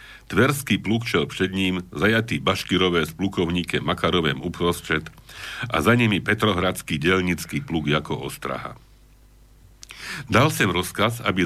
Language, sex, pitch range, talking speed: Slovak, male, 90-110 Hz, 120 wpm